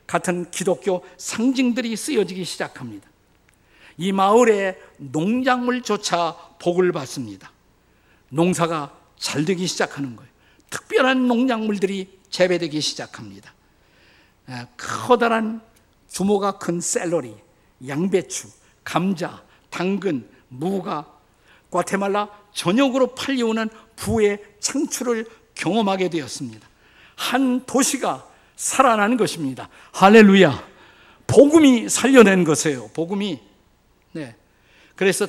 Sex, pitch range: male, 140-205 Hz